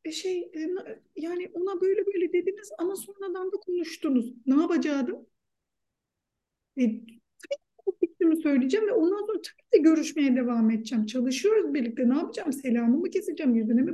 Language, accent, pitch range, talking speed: Turkish, native, 235-350 Hz, 135 wpm